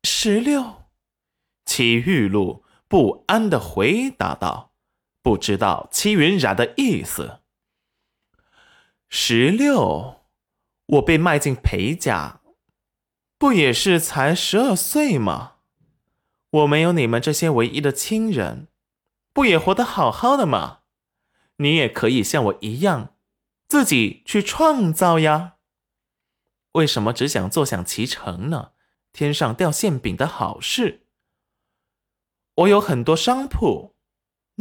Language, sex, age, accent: Chinese, male, 20-39, native